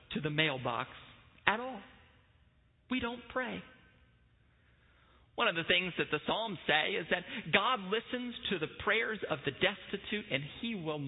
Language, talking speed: English, 155 wpm